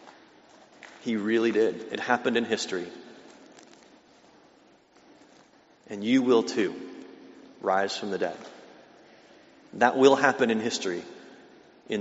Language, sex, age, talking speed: English, male, 30-49, 105 wpm